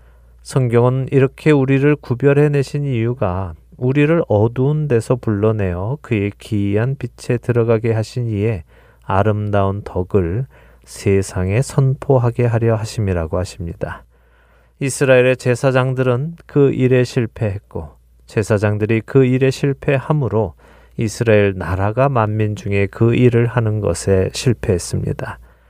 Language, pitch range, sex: Korean, 90-130 Hz, male